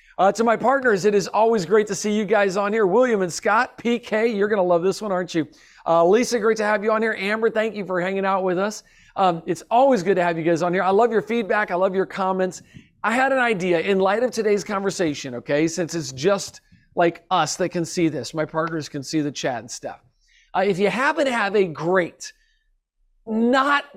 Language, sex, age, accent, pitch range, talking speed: English, male, 40-59, American, 175-215 Hz, 240 wpm